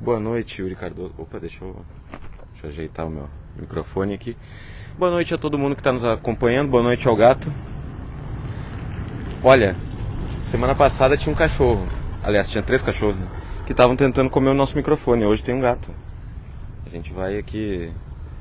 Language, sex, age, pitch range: Portuguese, male, 20-39, 90-120 Hz